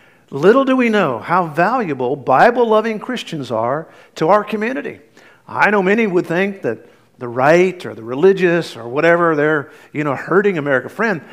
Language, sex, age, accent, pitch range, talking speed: English, male, 50-69, American, 135-180 Hz, 165 wpm